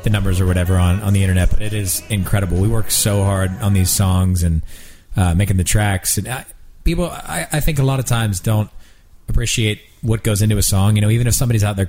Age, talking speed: 30-49, 240 wpm